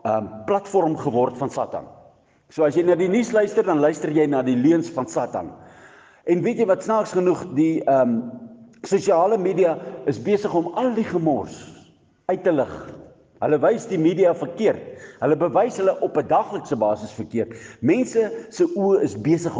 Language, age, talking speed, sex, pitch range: Dutch, 50-69, 170 wpm, male, 145-230 Hz